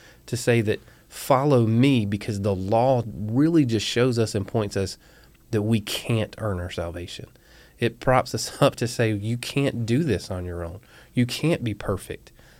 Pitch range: 95-115 Hz